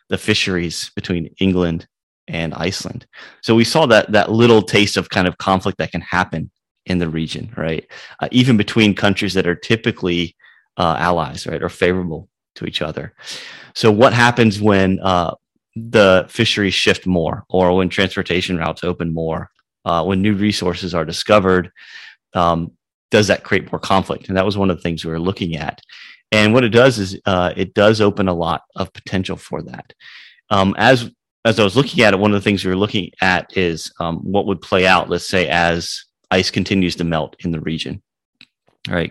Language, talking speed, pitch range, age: English, 195 wpm, 85-105 Hz, 30-49